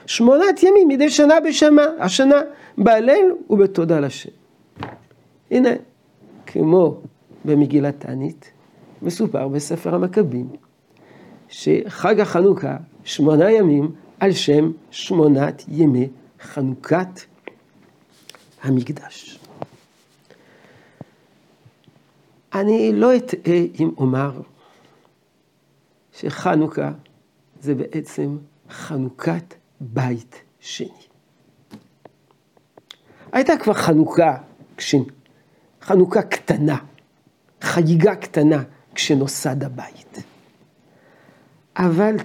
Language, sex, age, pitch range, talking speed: Hebrew, male, 60-79, 145-220 Hz, 65 wpm